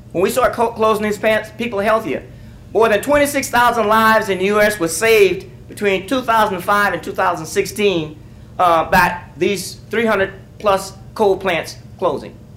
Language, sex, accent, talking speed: English, male, American, 150 wpm